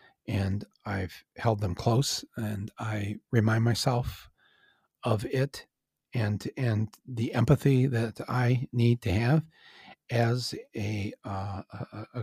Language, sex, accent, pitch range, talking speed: English, male, American, 110-140 Hz, 125 wpm